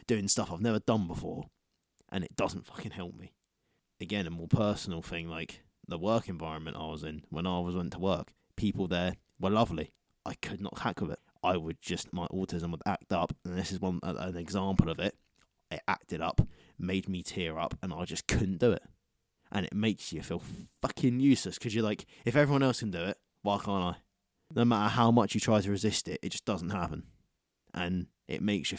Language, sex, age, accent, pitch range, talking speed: English, male, 20-39, British, 85-105 Hz, 220 wpm